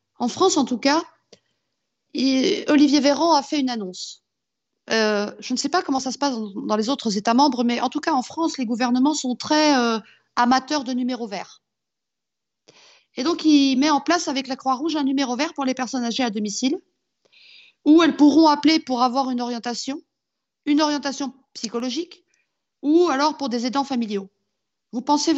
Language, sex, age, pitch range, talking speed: French, female, 50-69, 235-290 Hz, 180 wpm